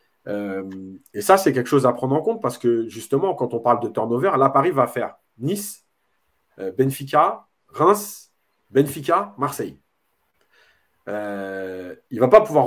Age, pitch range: 30-49, 120-155 Hz